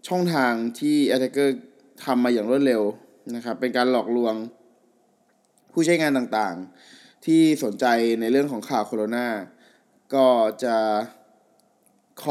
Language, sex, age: Thai, male, 20-39